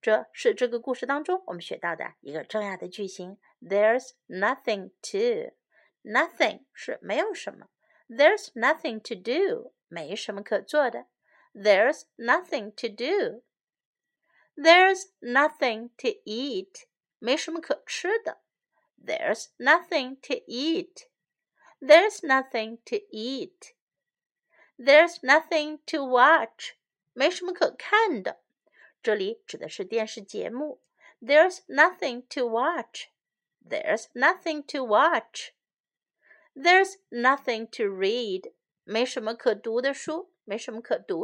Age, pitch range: 50-69, 245-370 Hz